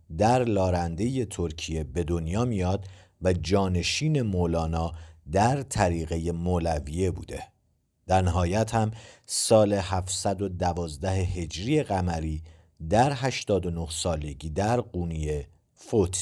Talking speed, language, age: 95 wpm, Persian, 50-69